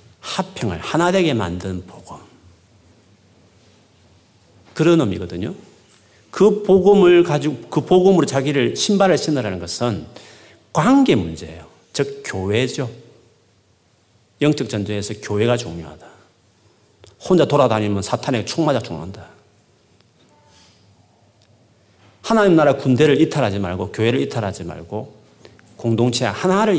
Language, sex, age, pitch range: Korean, male, 40-59, 100-145 Hz